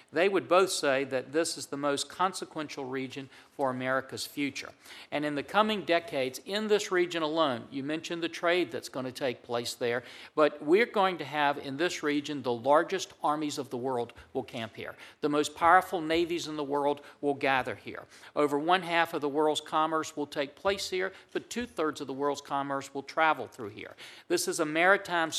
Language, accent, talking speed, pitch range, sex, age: English, American, 200 wpm, 140-175 Hz, male, 50-69